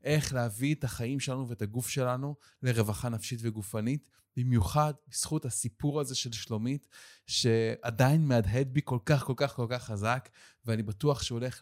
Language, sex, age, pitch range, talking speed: Hebrew, male, 20-39, 110-140 Hz, 160 wpm